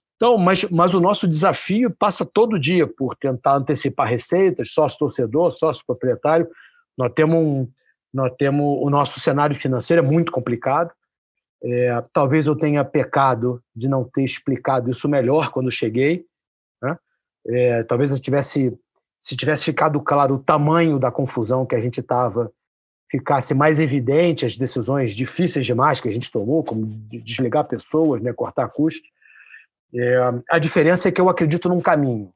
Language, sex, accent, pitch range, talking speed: Portuguese, male, Brazilian, 130-170 Hz, 155 wpm